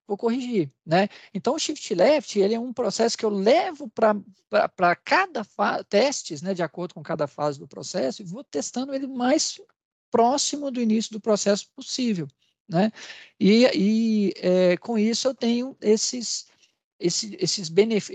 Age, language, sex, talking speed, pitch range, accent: 50-69, Portuguese, male, 160 wpm, 175-225 Hz, Brazilian